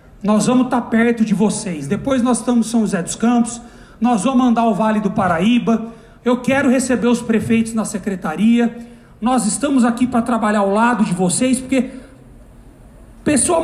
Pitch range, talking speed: 215-250 Hz, 170 wpm